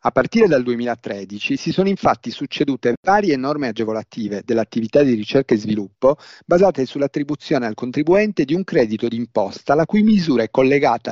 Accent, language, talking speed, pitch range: native, Italian, 155 wpm, 115-160 Hz